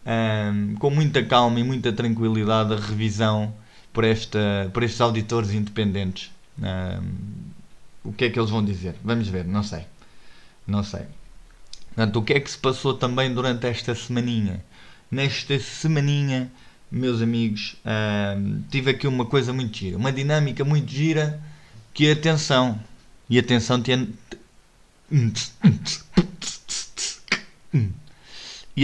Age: 20-39